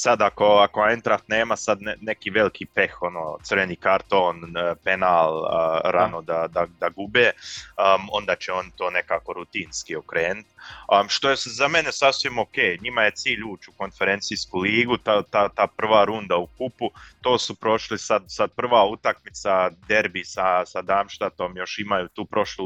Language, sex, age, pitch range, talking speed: Croatian, male, 30-49, 90-110 Hz, 170 wpm